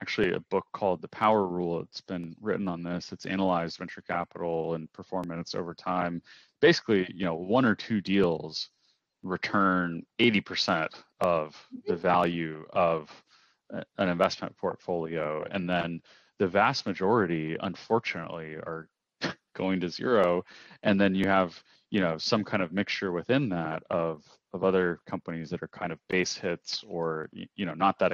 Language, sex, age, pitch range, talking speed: English, male, 30-49, 85-100 Hz, 155 wpm